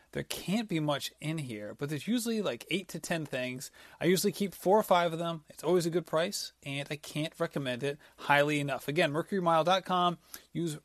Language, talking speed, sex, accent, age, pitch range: English, 205 wpm, male, American, 30-49, 135-170 Hz